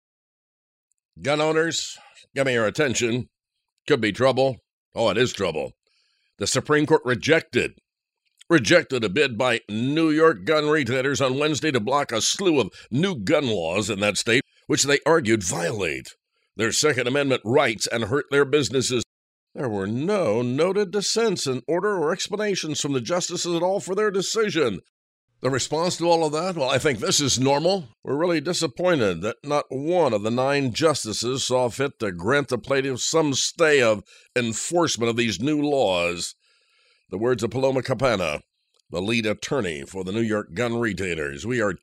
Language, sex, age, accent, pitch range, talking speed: English, male, 60-79, American, 115-160 Hz, 170 wpm